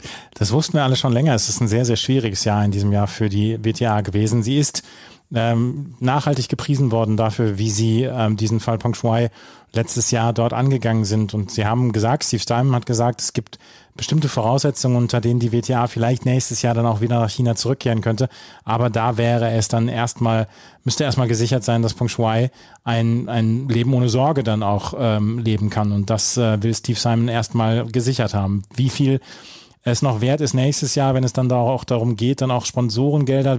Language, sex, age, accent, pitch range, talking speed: German, male, 30-49, German, 115-130 Hz, 205 wpm